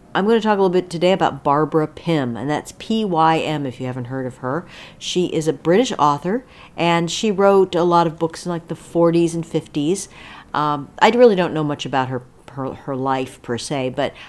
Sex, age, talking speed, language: female, 50-69, 220 wpm, English